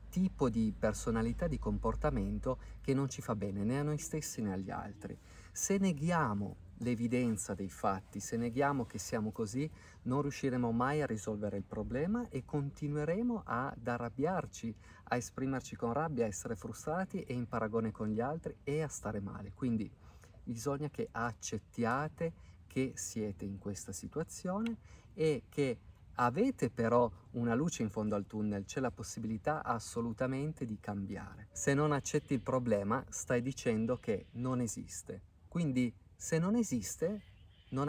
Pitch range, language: 100-135 Hz, Italian